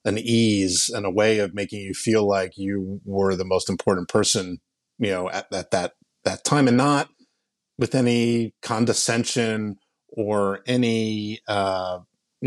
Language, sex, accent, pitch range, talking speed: English, male, American, 105-130 Hz, 150 wpm